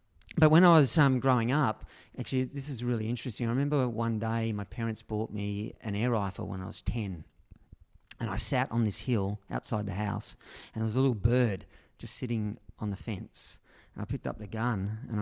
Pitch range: 105-125 Hz